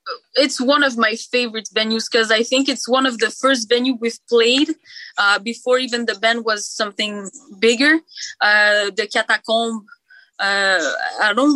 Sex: female